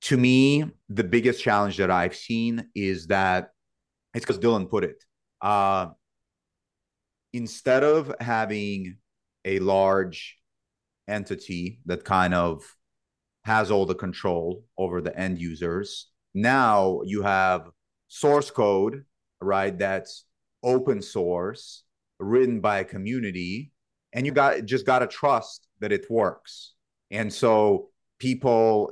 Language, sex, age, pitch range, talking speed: English, male, 30-49, 95-125 Hz, 120 wpm